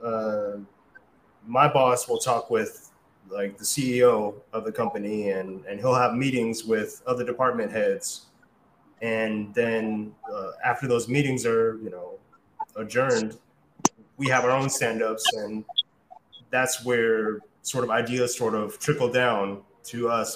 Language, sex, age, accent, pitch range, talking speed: English, male, 20-39, American, 110-135 Hz, 140 wpm